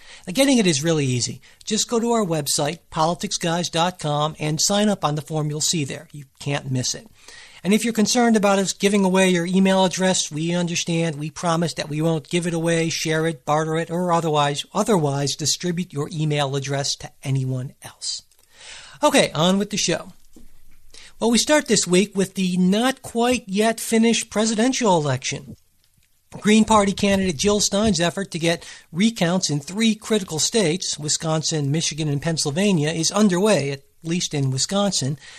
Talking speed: 165 wpm